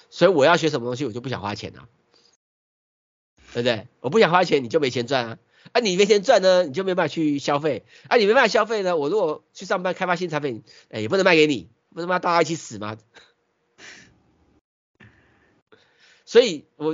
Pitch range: 115-160 Hz